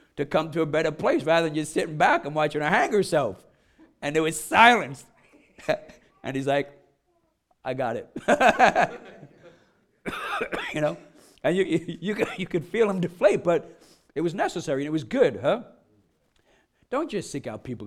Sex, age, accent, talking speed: male, 50-69, American, 170 wpm